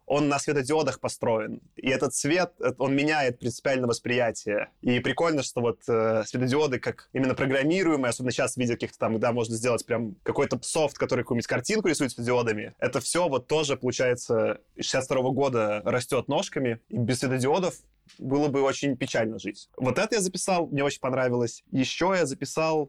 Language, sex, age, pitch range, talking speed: Russian, male, 20-39, 125-150 Hz, 170 wpm